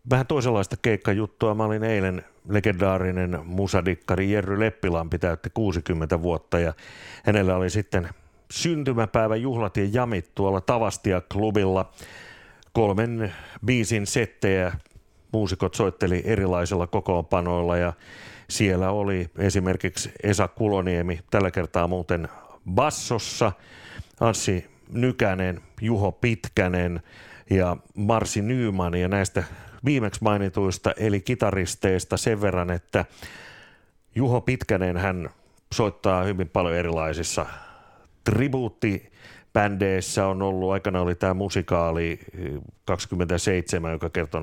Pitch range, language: 90-110 Hz, Finnish